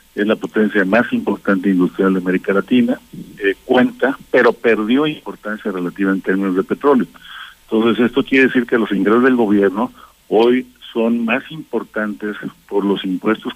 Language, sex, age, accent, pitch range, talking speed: Spanish, male, 50-69, Mexican, 100-120 Hz, 155 wpm